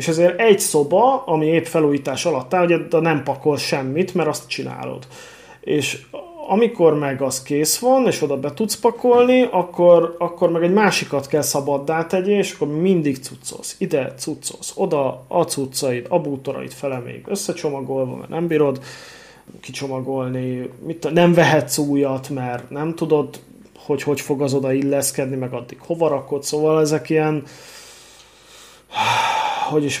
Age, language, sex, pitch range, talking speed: 30-49, Hungarian, male, 135-170 Hz, 150 wpm